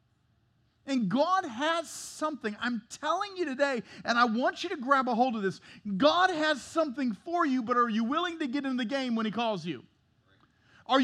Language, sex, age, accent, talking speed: English, male, 40-59, American, 200 wpm